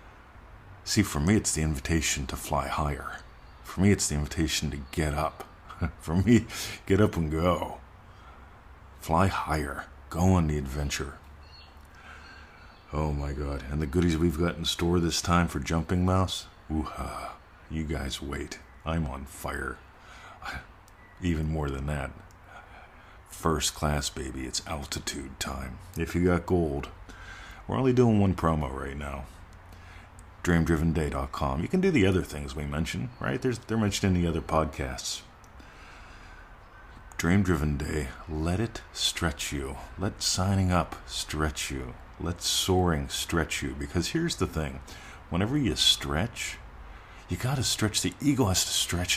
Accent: American